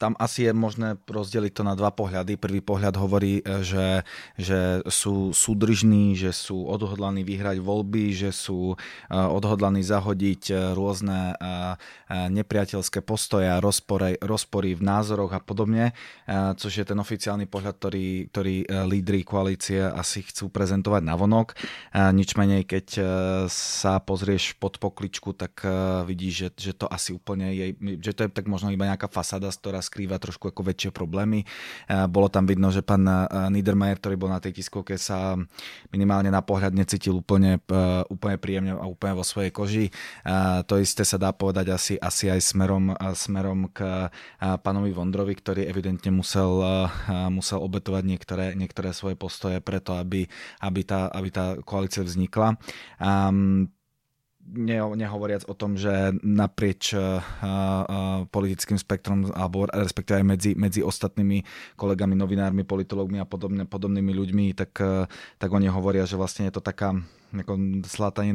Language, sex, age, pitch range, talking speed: Czech, male, 20-39, 95-100 Hz, 140 wpm